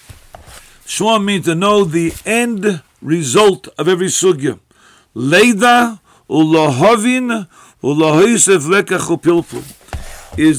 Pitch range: 170-210 Hz